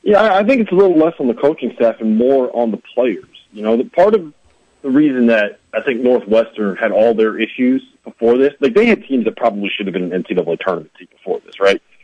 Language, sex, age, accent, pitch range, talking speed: English, male, 40-59, American, 110-165 Hz, 245 wpm